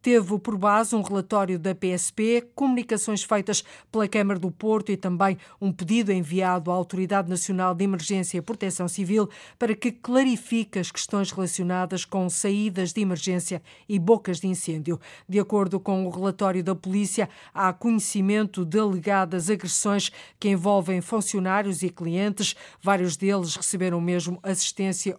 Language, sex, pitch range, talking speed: Portuguese, female, 180-205 Hz, 150 wpm